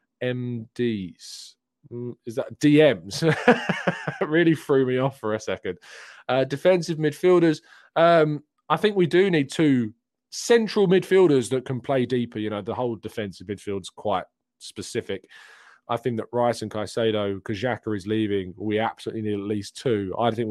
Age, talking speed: 20-39, 155 wpm